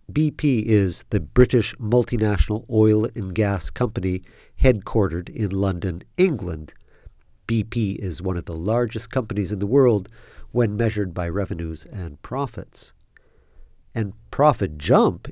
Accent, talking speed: American, 125 wpm